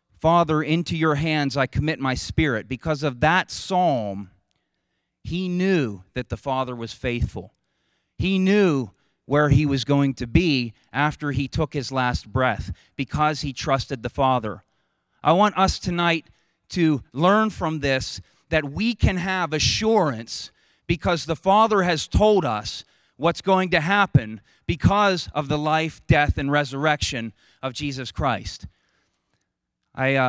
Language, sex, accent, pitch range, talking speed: English, male, American, 120-155 Hz, 145 wpm